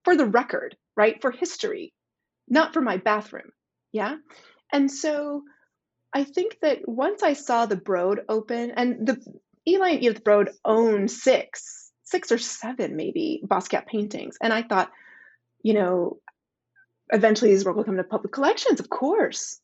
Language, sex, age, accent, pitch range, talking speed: English, female, 30-49, American, 195-275 Hz, 155 wpm